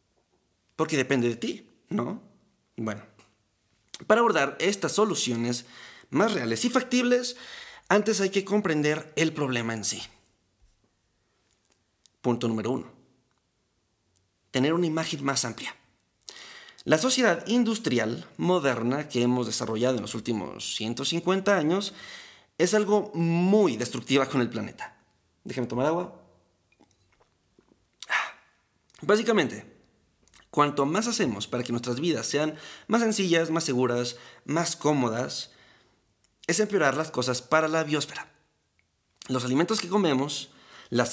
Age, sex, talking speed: 30-49, male, 115 wpm